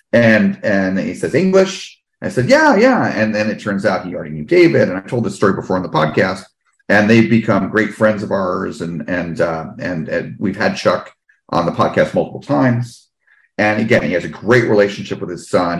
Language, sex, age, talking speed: English, male, 40-59, 215 wpm